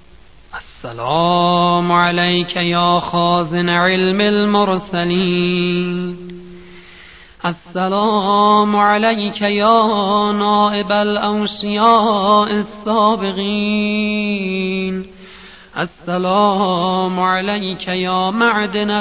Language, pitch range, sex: Persian, 185-235 Hz, male